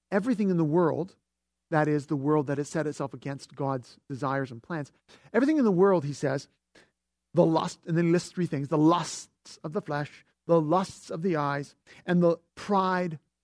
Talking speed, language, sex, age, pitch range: 195 wpm, English, male, 50-69, 135-190 Hz